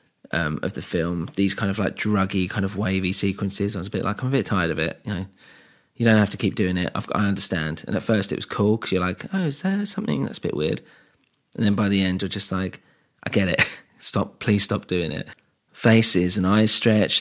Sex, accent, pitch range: male, British, 90-105 Hz